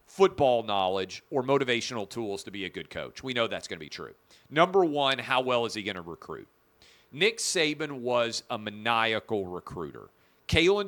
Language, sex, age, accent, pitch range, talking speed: English, male, 40-59, American, 115-150 Hz, 180 wpm